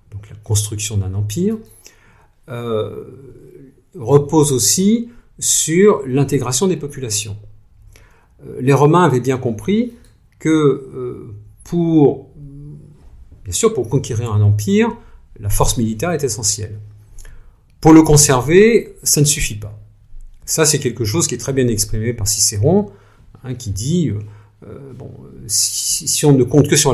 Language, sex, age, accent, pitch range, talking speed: French, male, 50-69, French, 105-140 Hz, 140 wpm